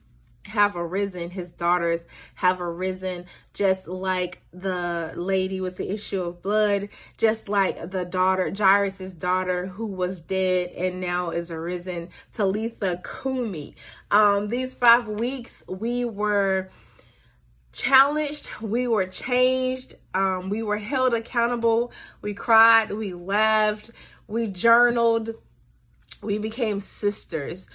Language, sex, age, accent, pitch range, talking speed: English, female, 20-39, American, 180-215 Hz, 115 wpm